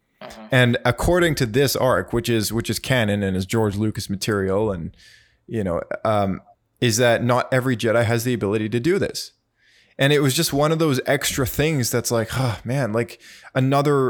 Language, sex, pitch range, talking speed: English, male, 110-135 Hz, 190 wpm